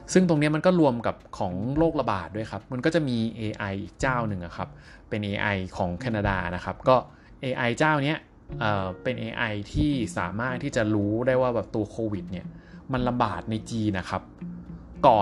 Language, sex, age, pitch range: Thai, male, 20-39, 100-135 Hz